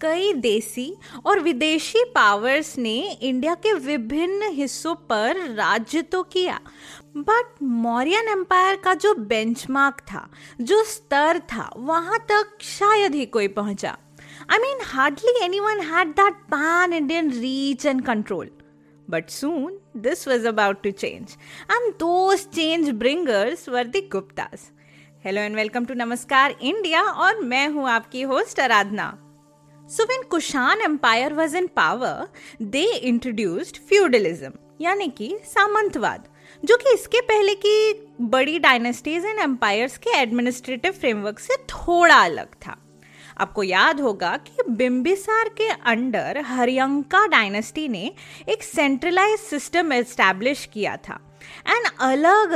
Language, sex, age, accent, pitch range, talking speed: Hindi, female, 20-39, native, 240-380 Hz, 105 wpm